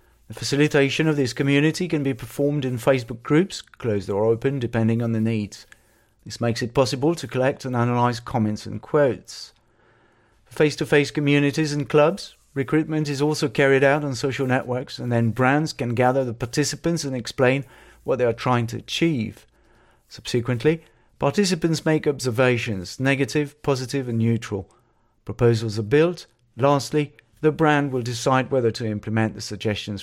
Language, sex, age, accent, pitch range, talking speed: English, male, 40-59, British, 115-145 Hz, 155 wpm